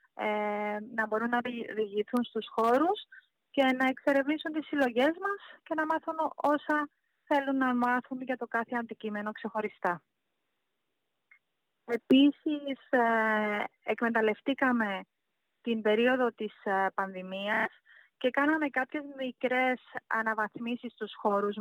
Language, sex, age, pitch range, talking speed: Greek, female, 20-39, 220-275 Hz, 110 wpm